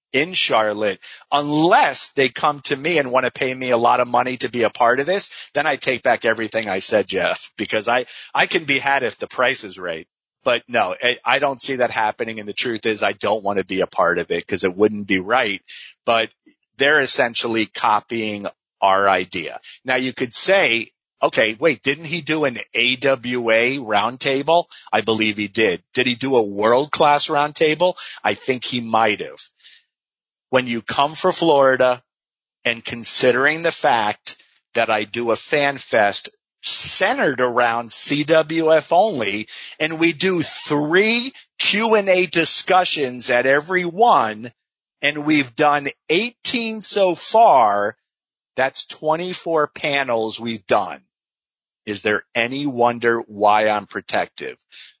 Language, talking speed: English, 160 wpm